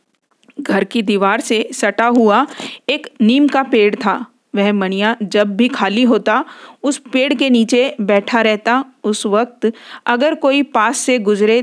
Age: 40-59